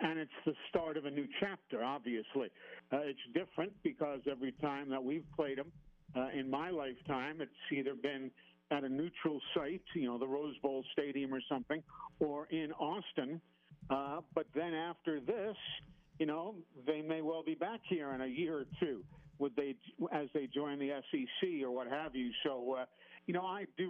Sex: male